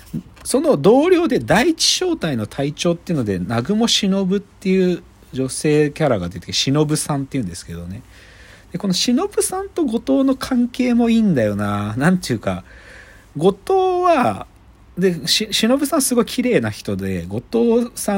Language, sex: Japanese, male